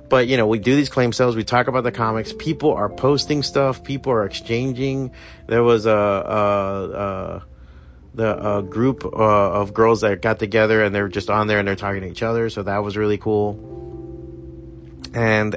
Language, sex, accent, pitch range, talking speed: English, male, American, 100-120 Hz, 185 wpm